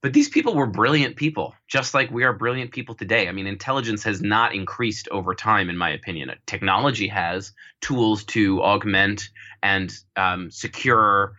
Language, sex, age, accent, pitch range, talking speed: English, male, 20-39, American, 95-115 Hz, 170 wpm